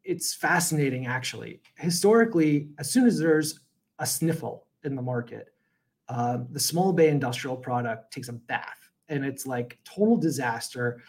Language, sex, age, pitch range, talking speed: English, male, 30-49, 135-160 Hz, 145 wpm